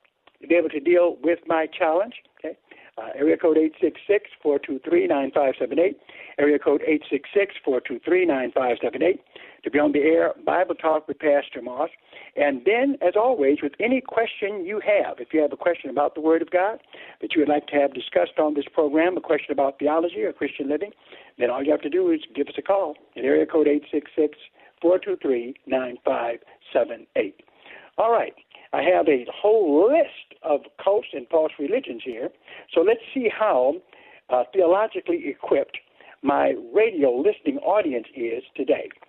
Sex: male